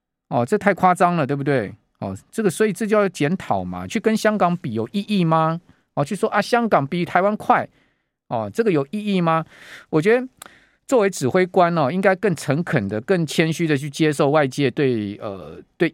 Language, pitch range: Chinese, 140-205 Hz